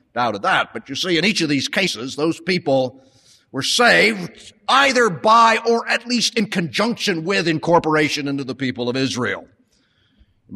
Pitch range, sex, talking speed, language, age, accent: 110-170 Hz, male, 170 wpm, English, 50-69, American